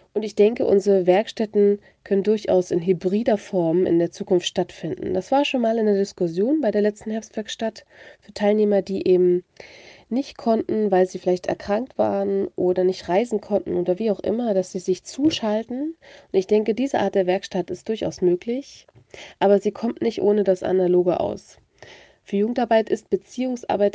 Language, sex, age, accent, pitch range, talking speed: German, female, 30-49, German, 185-215 Hz, 175 wpm